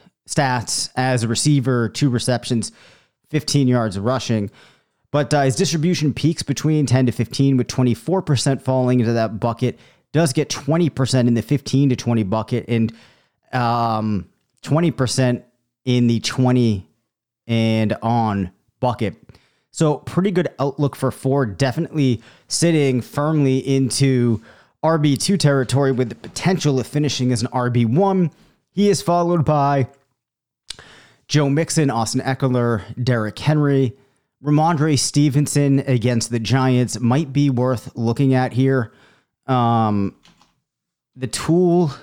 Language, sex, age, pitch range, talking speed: English, male, 30-49, 120-140 Hz, 125 wpm